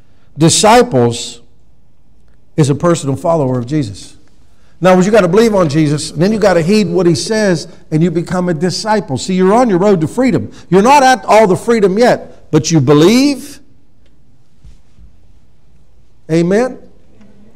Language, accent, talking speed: English, American, 155 wpm